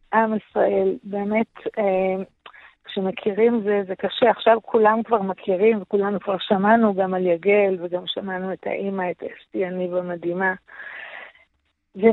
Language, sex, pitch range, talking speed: English, female, 190-215 Hz, 135 wpm